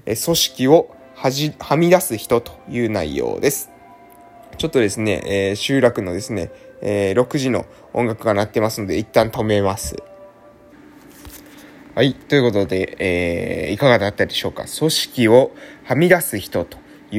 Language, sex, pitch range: Japanese, male, 105-170 Hz